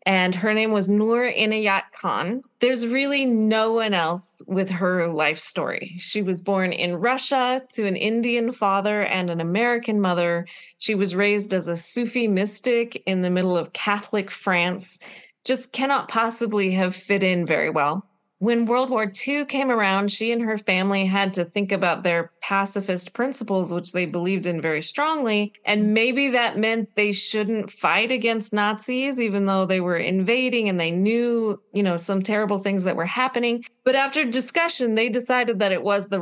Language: English